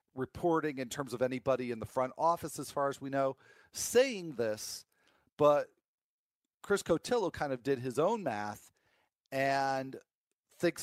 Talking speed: 150 wpm